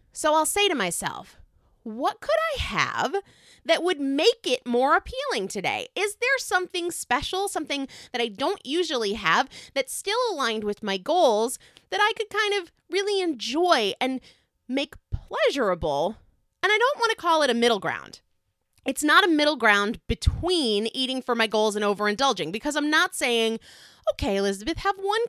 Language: English